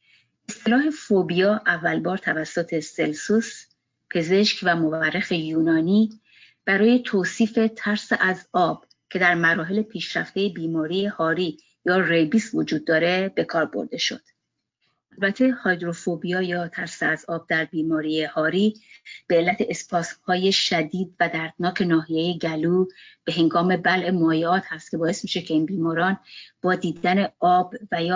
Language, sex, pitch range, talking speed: Persian, female, 165-200 Hz, 130 wpm